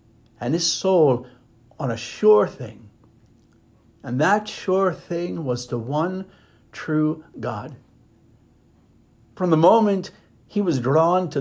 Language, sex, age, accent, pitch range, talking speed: English, male, 60-79, American, 120-175 Hz, 120 wpm